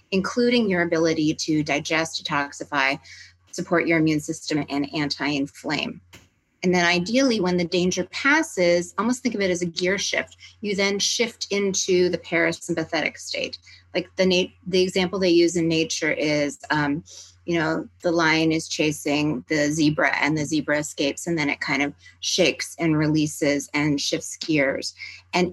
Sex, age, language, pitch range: female, 30-49, English, 150-180 Hz